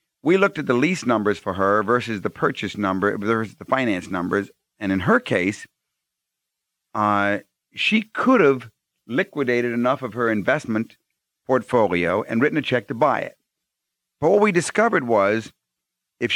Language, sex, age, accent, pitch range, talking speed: English, male, 50-69, American, 110-155 Hz, 160 wpm